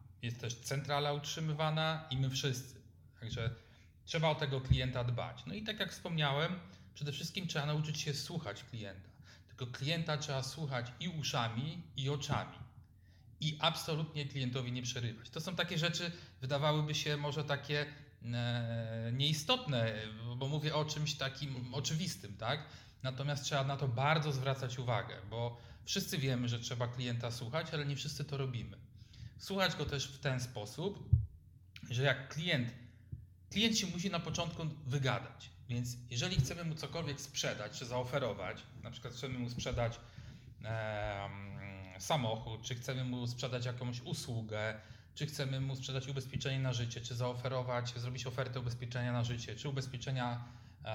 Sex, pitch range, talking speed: male, 120-145 Hz, 145 wpm